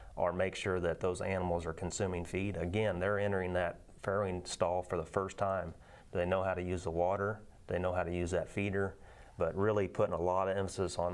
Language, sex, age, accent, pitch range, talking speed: English, male, 30-49, American, 85-95 Hz, 220 wpm